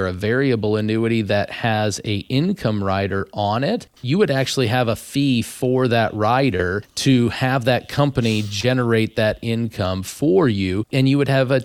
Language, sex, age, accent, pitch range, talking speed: English, male, 40-59, American, 105-130 Hz, 170 wpm